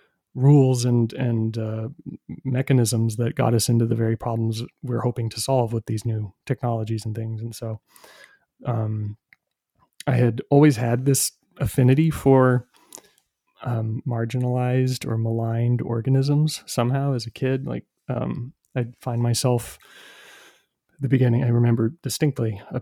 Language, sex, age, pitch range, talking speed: English, male, 30-49, 110-125 Hz, 135 wpm